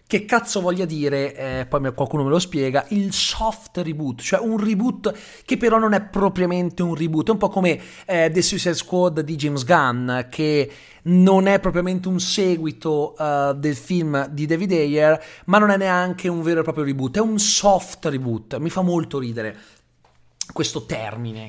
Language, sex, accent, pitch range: Italian, male, native, 125-175 Hz